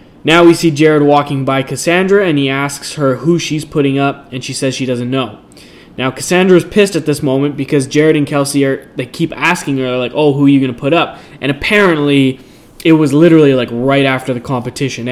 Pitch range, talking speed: 130-155 Hz, 220 wpm